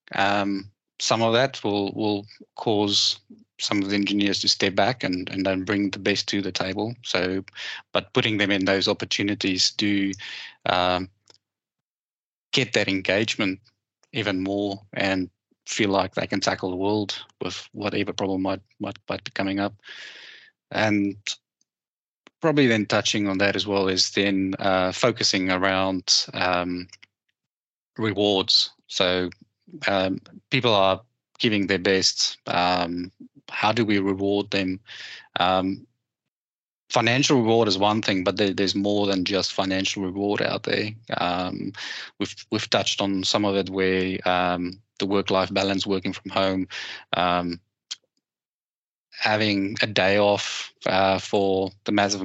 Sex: male